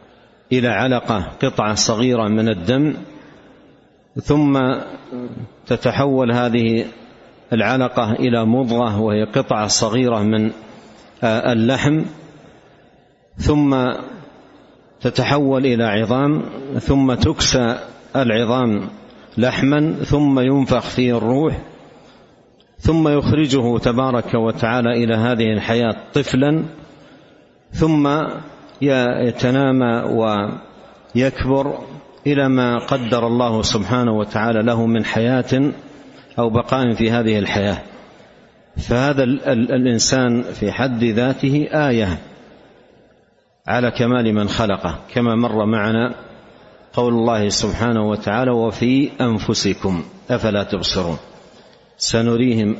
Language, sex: Arabic, male